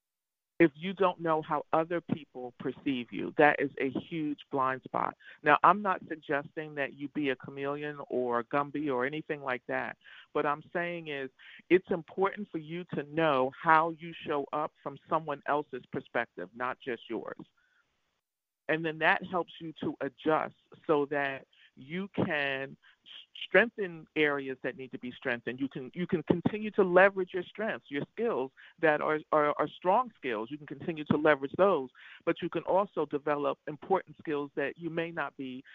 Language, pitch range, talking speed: English, 135-170 Hz, 175 wpm